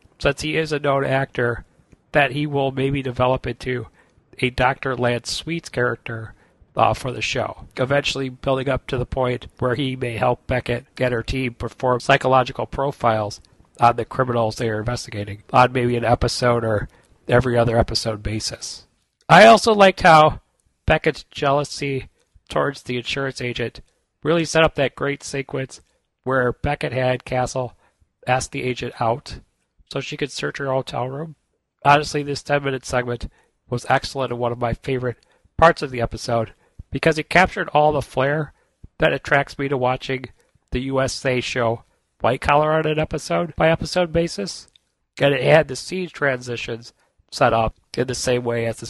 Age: 40-59